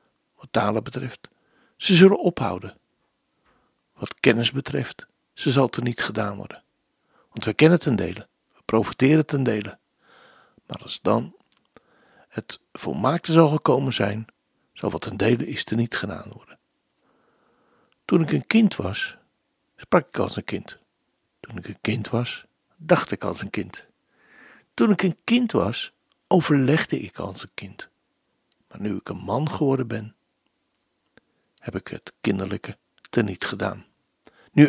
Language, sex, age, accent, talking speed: Dutch, male, 60-79, Dutch, 145 wpm